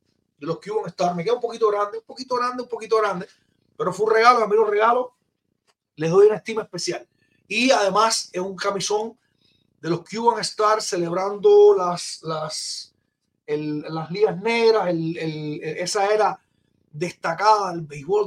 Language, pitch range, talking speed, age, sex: Spanish, 170-215 Hz, 170 wpm, 30-49, male